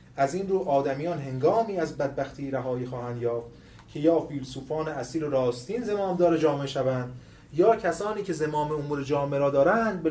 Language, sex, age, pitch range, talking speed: Persian, male, 30-49, 120-160 Hz, 165 wpm